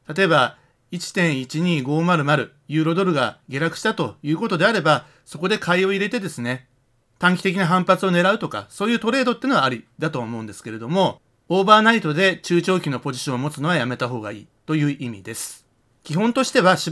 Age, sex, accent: 40-59, male, native